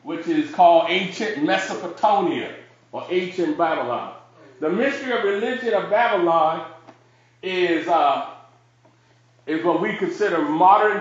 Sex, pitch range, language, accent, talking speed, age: male, 170-245 Hz, English, American, 115 wpm, 40-59